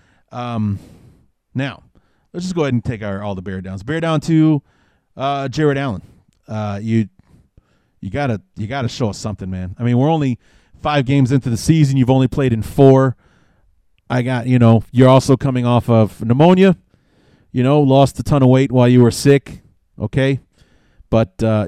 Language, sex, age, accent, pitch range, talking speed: English, male, 30-49, American, 115-145 Hz, 185 wpm